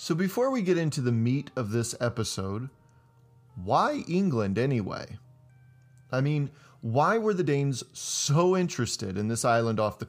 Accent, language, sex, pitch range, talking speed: American, English, male, 115-145 Hz, 155 wpm